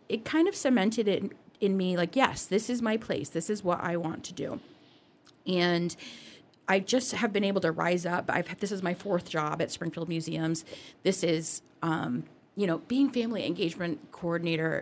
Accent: American